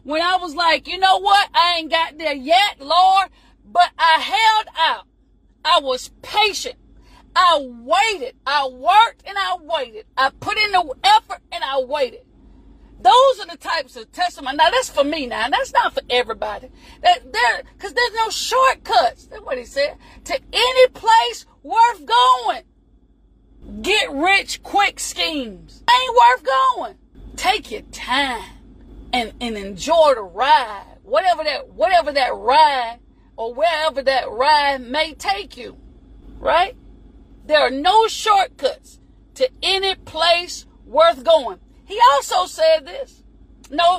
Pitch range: 290-410 Hz